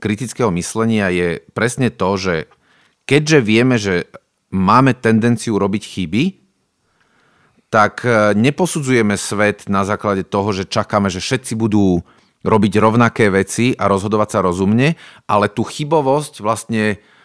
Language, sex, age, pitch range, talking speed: Slovak, male, 40-59, 100-125 Hz, 120 wpm